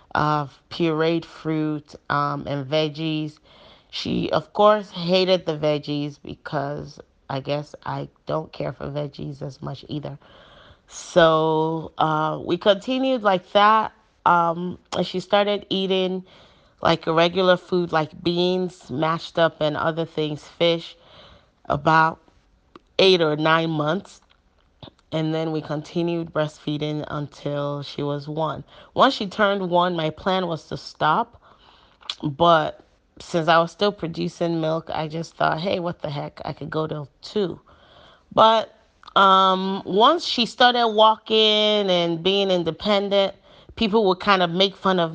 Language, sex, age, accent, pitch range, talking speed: English, female, 30-49, American, 155-200 Hz, 140 wpm